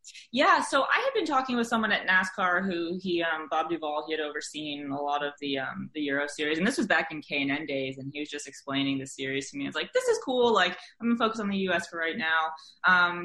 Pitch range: 140-180 Hz